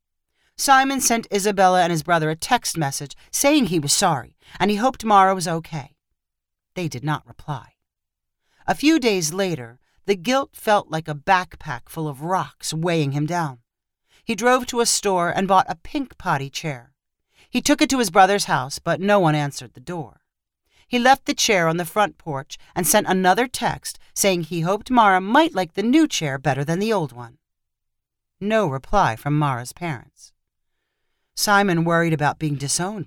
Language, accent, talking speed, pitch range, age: English, American, 180 wpm, 150-220 Hz, 40-59